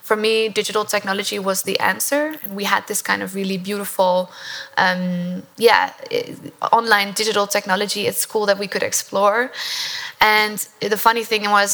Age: 20-39